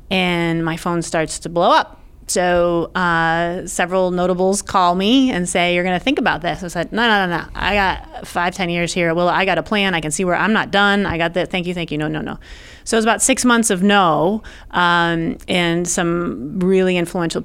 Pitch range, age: 170-200 Hz, 30-49